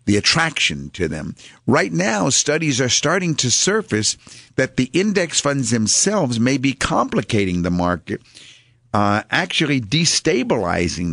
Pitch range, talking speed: 115-145 Hz, 130 wpm